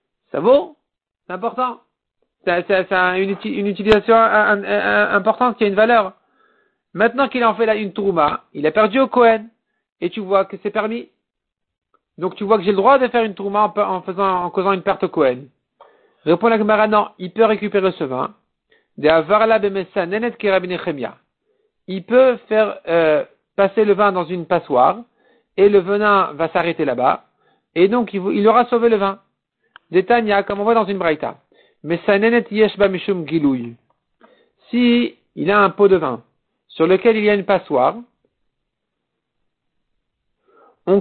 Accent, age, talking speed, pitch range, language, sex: French, 50-69, 160 wpm, 190-230 Hz, French, male